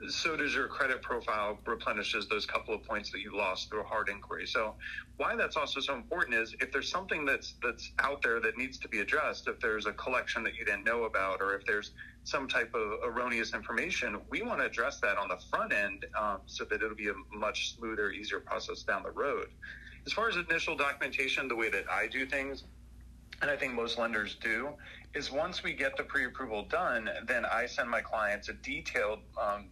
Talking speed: 215 wpm